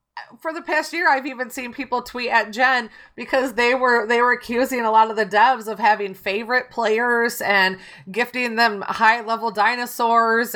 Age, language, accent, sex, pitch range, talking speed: 30-49, English, American, female, 195-240 Hz, 180 wpm